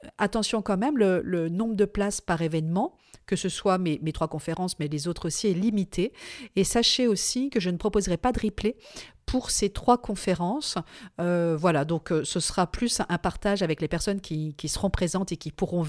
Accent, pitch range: French, 150-195 Hz